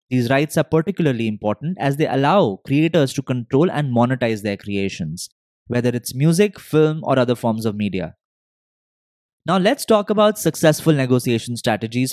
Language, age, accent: English, 20-39, Indian